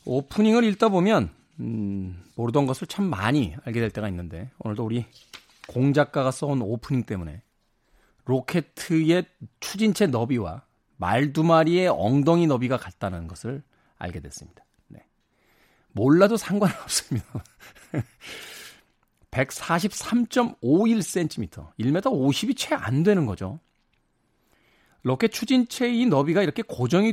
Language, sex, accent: Korean, male, native